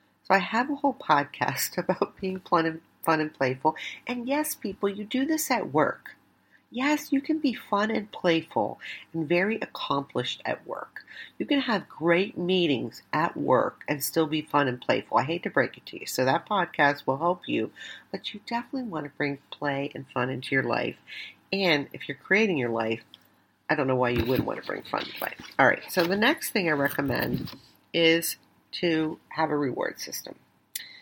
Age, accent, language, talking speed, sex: 50-69, American, English, 195 wpm, female